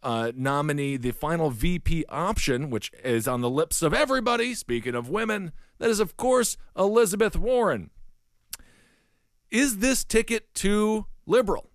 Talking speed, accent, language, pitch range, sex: 140 wpm, American, English, 135-195 Hz, male